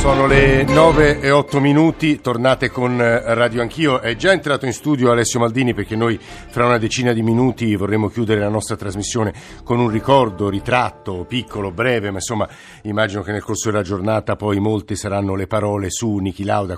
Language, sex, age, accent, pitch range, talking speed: Italian, male, 50-69, native, 100-130 Hz, 180 wpm